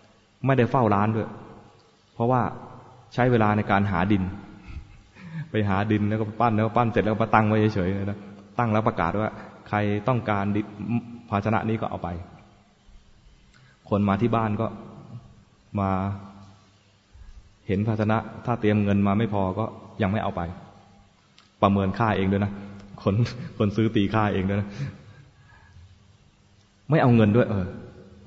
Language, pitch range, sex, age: English, 100-115 Hz, male, 20-39